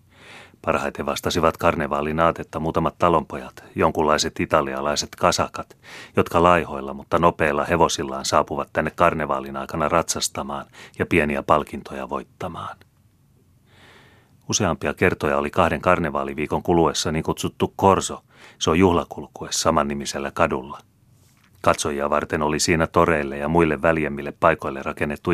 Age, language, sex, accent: 30-49, Finnish, male, native